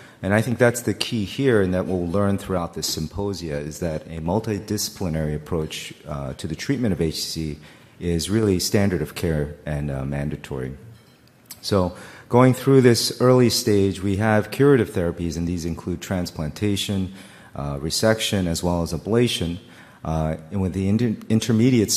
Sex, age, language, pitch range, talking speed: male, 40-59, English, 80-105 Hz, 160 wpm